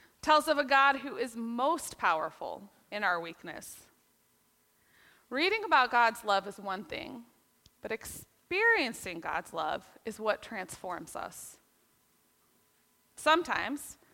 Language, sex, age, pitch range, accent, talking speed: English, female, 20-39, 210-290 Hz, American, 115 wpm